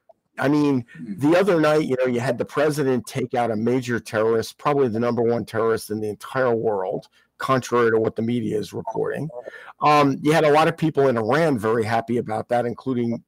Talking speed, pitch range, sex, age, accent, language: 210 wpm, 115-145 Hz, male, 50-69, American, English